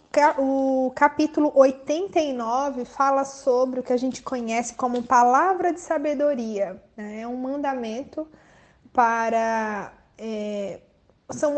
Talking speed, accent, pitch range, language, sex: 110 wpm, Brazilian, 230-290 Hz, Portuguese, female